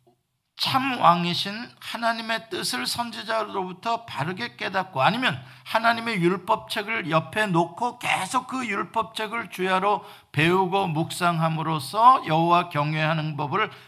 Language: Korean